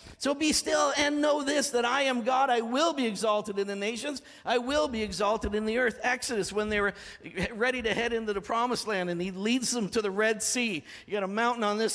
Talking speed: 245 wpm